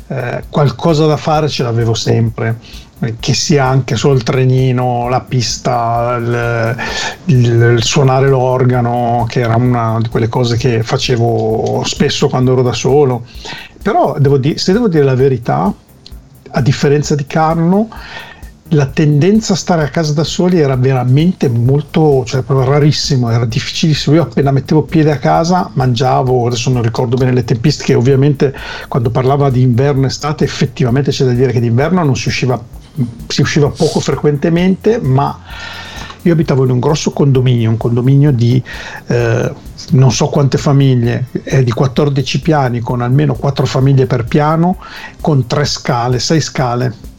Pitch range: 125-150 Hz